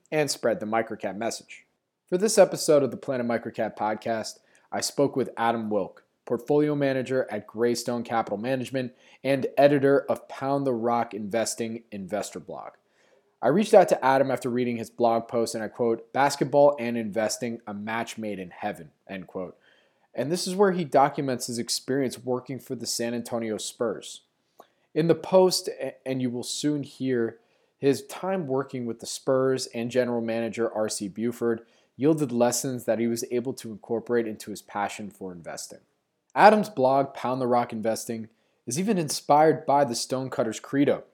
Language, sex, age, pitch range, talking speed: English, male, 20-39, 115-140 Hz, 170 wpm